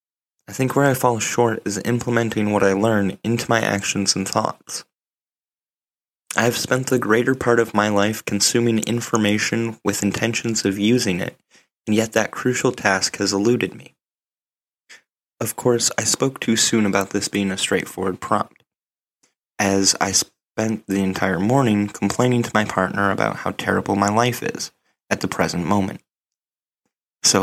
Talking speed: 160 wpm